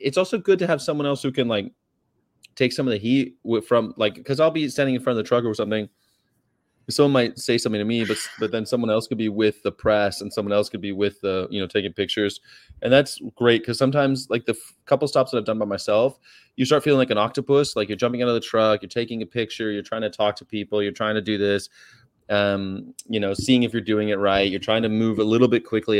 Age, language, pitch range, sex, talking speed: 30-49, English, 100-125 Hz, male, 265 wpm